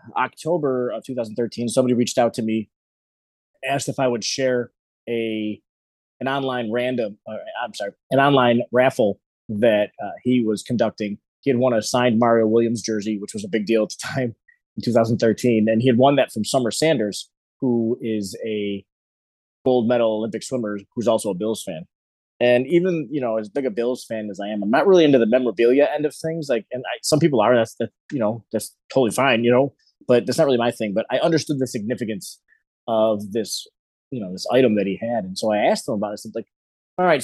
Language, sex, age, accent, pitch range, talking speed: English, male, 20-39, American, 110-130 Hz, 210 wpm